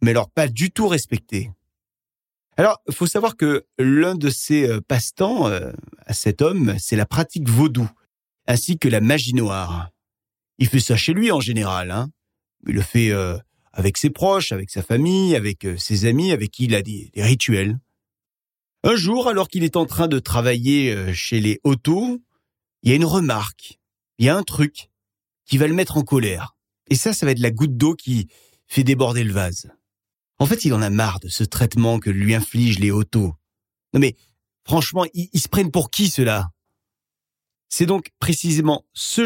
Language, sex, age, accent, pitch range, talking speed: French, male, 40-59, French, 105-155 Hz, 185 wpm